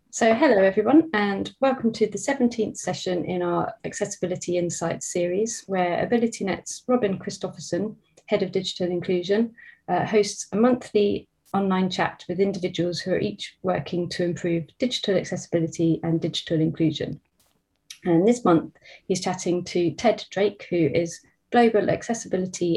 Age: 30-49